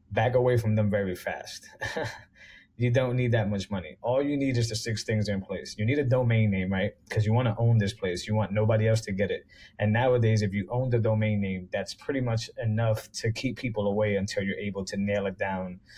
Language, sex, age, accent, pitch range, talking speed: English, male, 20-39, American, 100-115 Hz, 240 wpm